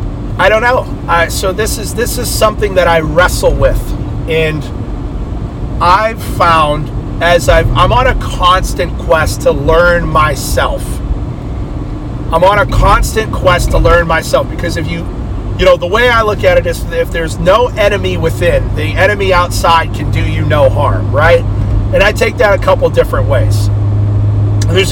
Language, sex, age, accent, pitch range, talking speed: English, male, 40-59, American, 100-125 Hz, 170 wpm